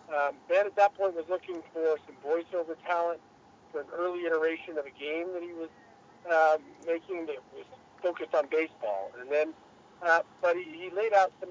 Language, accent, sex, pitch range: English, American, male, 150-175 Hz